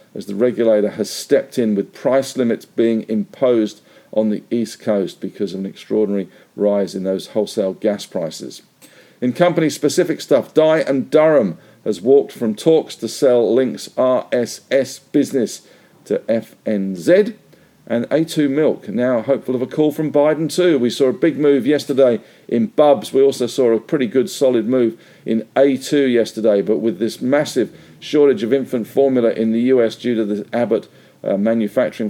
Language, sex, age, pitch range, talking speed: English, male, 50-69, 105-135 Hz, 170 wpm